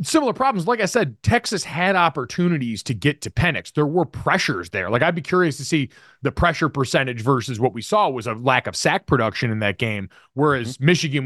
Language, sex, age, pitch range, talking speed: English, male, 30-49, 130-170 Hz, 215 wpm